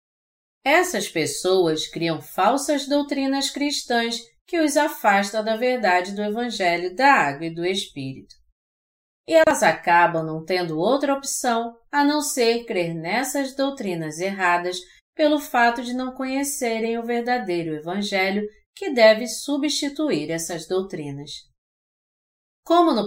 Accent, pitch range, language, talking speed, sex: Brazilian, 180-275 Hz, Portuguese, 120 wpm, female